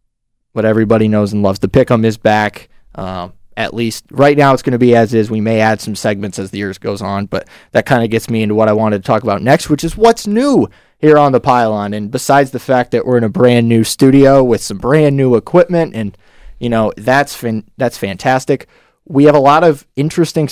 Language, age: English, 20-39